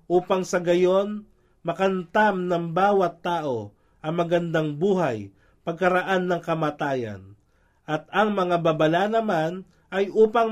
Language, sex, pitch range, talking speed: Filipino, male, 145-205 Hz, 115 wpm